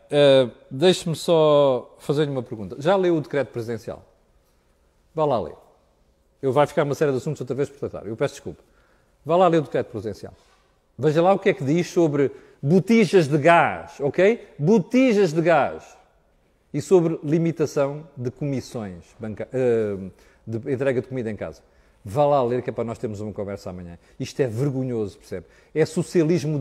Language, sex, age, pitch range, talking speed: Portuguese, male, 40-59, 120-165 Hz, 180 wpm